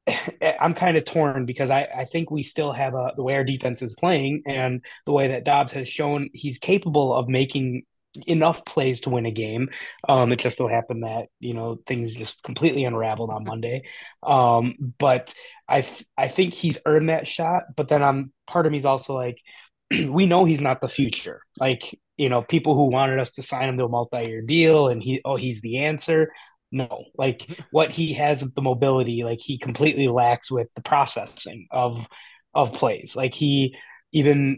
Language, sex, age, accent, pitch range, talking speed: English, male, 20-39, American, 125-150 Hz, 200 wpm